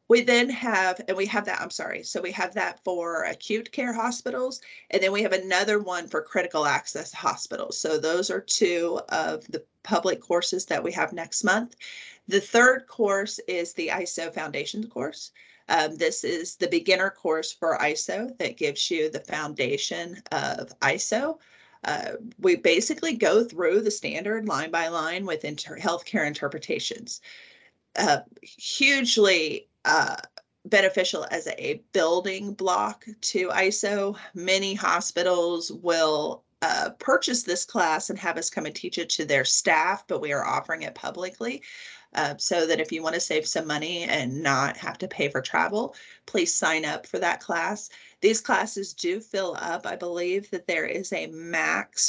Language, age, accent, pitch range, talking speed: English, 40-59, American, 170-240 Hz, 165 wpm